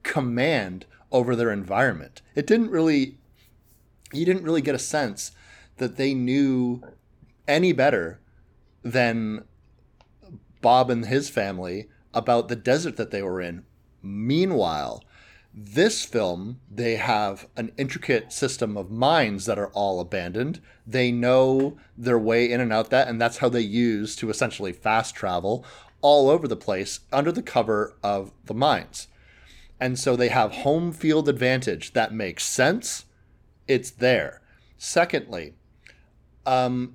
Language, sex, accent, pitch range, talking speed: English, male, American, 110-135 Hz, 140 wpm